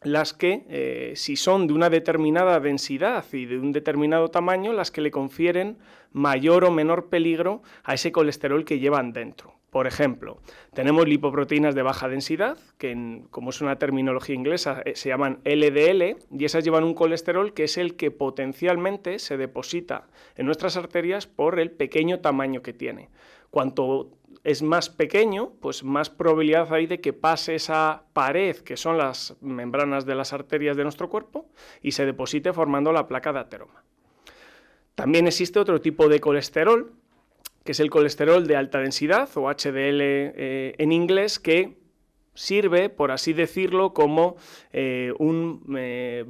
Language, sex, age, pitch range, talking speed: Spanish, male, 30-49, 140-175 Hz, 160 wpm